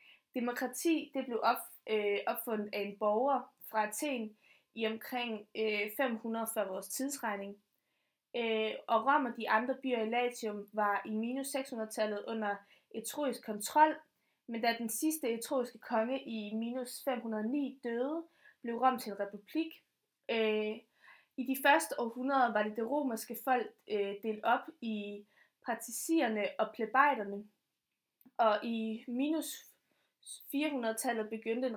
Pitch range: 215-260 Hz